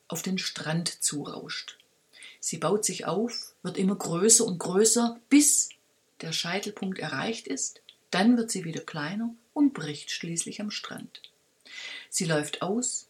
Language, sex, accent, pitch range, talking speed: German, female, German, 165-225 Hz, 140 wpm